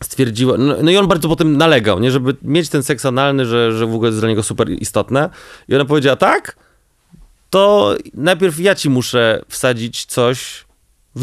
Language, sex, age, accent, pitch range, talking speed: Polish, male, 30-49, native, 115-155 Hz, 180 wpm